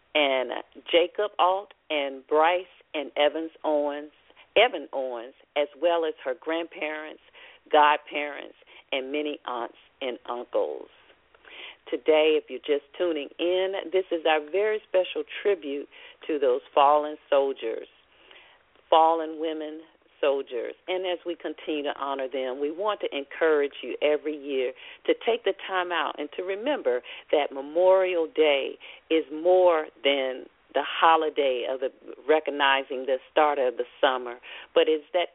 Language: English